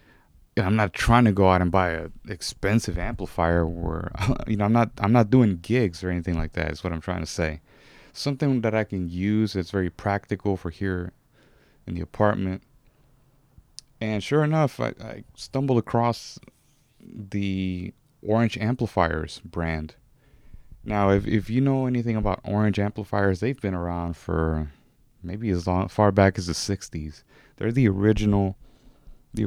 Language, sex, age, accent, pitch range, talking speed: English, male, 30-49, American, 90-125 Hz, 165 wpm